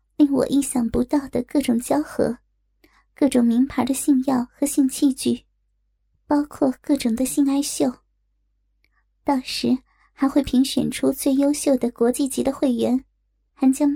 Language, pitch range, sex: Chinese, 255-290 Hz, male